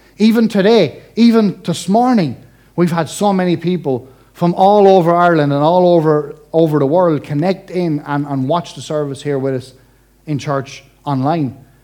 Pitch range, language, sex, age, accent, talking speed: 150-220 Hz, English, male, 30-49, Irish, 165 wpm